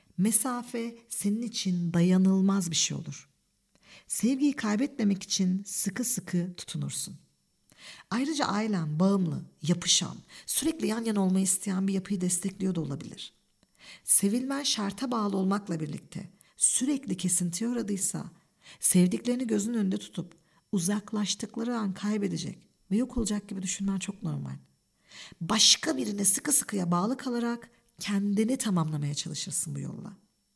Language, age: Turkish, 50-69